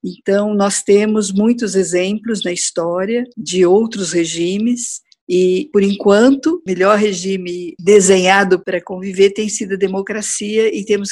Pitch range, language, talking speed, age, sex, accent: 185-235 Hz, Portuguese, 130 wpm, 50-69, female, Brazilian